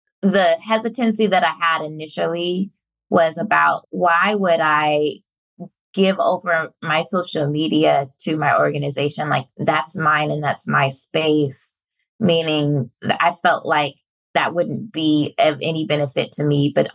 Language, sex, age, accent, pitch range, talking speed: English, female, 20-39, American, 150-180 Hz, 140 wpm